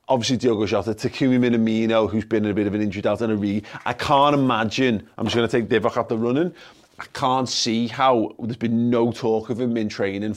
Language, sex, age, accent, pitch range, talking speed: English, male, 30-49, British, 105-130 Hz, 230 wpm